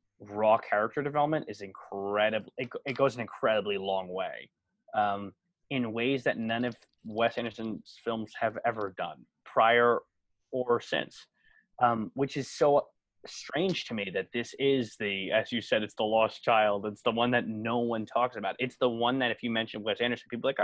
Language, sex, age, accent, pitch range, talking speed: English, male, 20-39, American, 105-120 Hz, 185 wpm